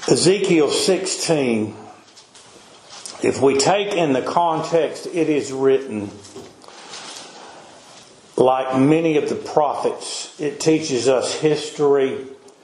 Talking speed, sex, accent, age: 95 wpm, male, American, 50-69